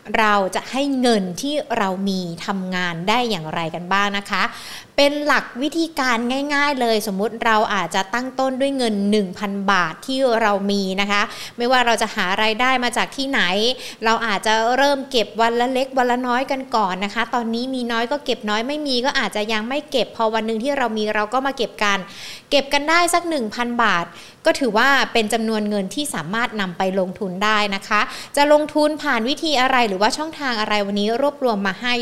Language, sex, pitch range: Thai, female, 205-255 Hz